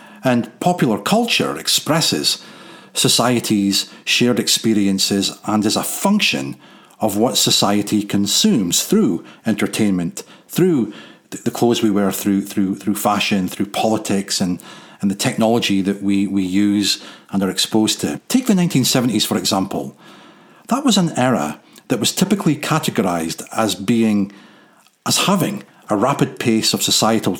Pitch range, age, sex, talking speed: 100-125 Hz, 40-59, male, 135 wpm